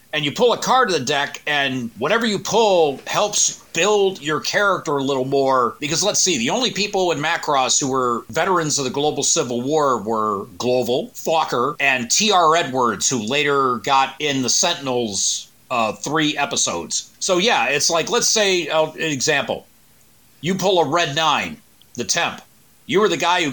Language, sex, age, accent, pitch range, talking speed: English, male, 40-59, American, 130-160 Hz, 180 wpm